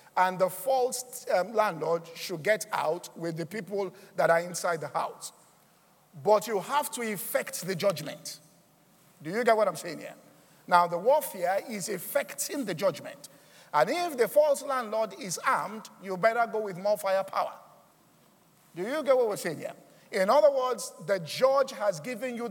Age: 50-69